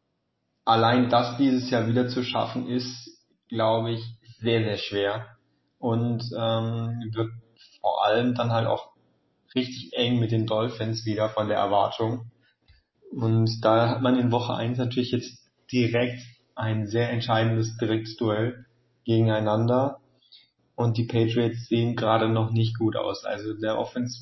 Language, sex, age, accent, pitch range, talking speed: German, male, 30-49, German, 110-120 Hz, 140 wpm